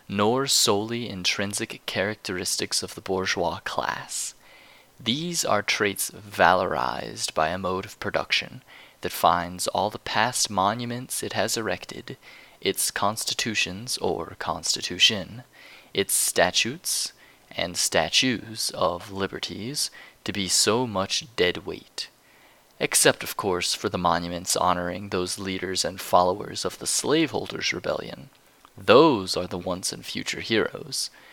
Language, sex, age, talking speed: English, male, 20-39, 125 wpm